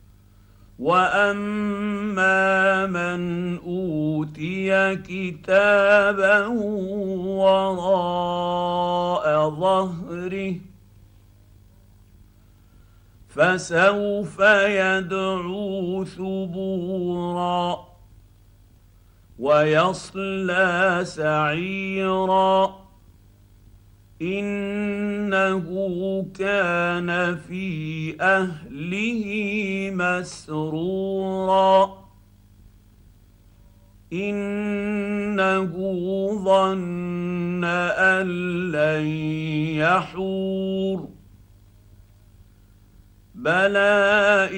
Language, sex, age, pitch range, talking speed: Arabic, male, 50-69, 145-190 Hz, 30 wpm